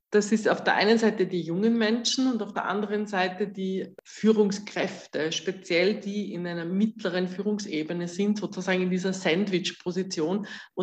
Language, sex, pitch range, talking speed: German, female, 185-230 Hz, 155 wpm